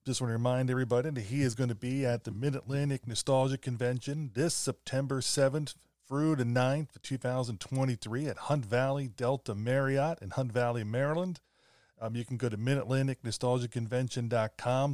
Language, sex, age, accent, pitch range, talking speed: English, male, 30-49, American, 120-135 Hz, 155 wpm